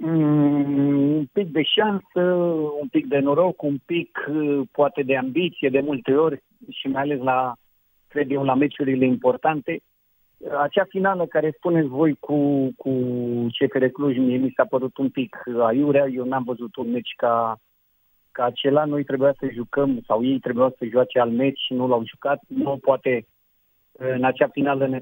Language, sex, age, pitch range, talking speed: Romanian, male, 50-69, 120-145 Hz, 170 wpm